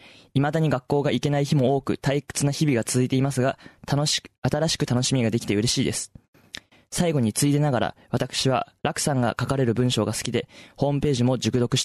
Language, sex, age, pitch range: Japanese, male, 20-39, 105-135 Hz